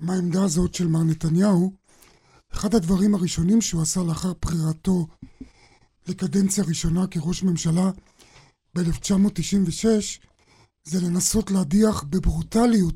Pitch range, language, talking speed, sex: 165-200 Hz, Hebrew, 95 wpm, male